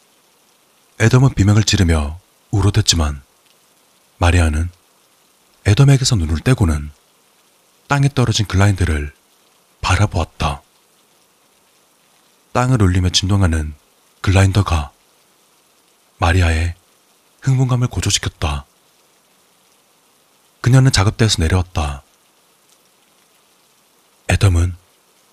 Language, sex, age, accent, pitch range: Korean, male, 30-49, native, 85-110 Hz